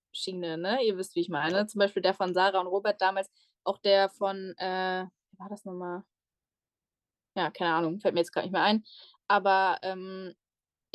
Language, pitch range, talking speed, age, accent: German, 195-225 Hz, 180 wpm, 10-29, German